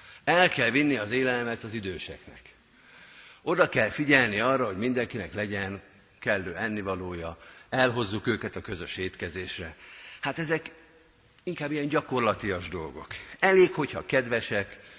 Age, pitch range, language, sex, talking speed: 50-69, 100-145 Hz, Hungarian, male, 120 wpm